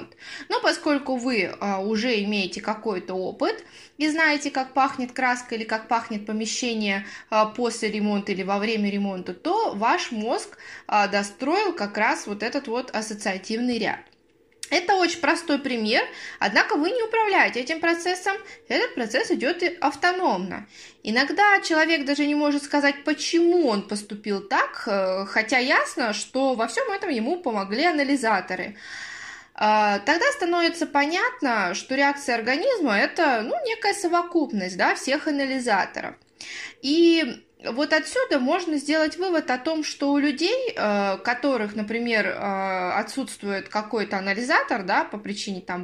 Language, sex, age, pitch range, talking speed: Russian, female, 20-39, 215-330 Hz, 130 wpm